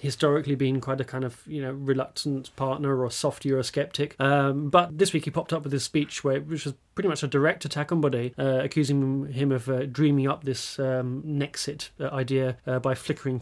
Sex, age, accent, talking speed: male, 30-49, British, 215 wpm